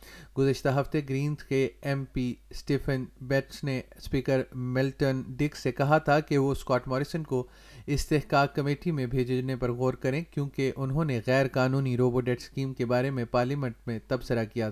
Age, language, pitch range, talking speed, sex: 30-49, Urdu, 130-145 Hz, 160 wpm, male